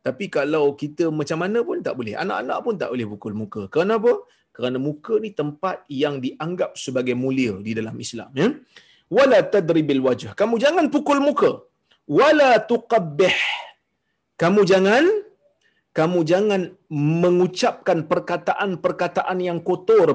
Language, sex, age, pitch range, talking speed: Malayalam, male, 30-49, 150-210 Hz, 135 wpm